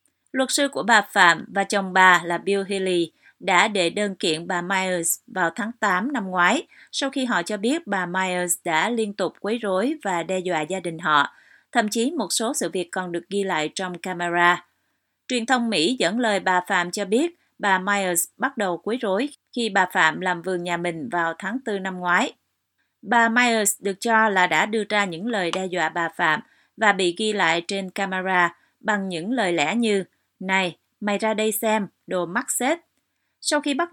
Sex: female